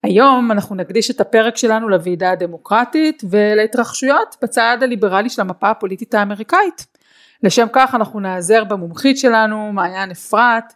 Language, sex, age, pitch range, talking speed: Hebrew, female, 30-49, 195-255 Hz, 130 wpm